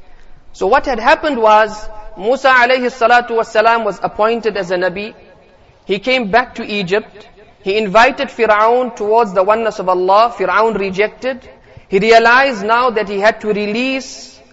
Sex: male